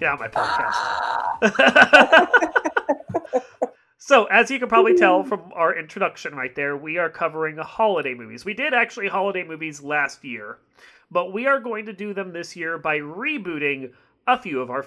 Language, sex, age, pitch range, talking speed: English, male, 30-49, 150-210 Hz, 160 wpm